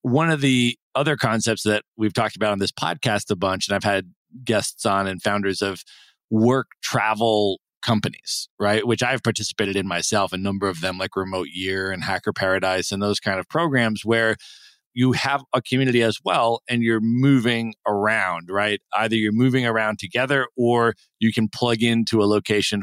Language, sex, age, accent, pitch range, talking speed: English, male, 40-59, American, 100-120 Hz, 185 wpm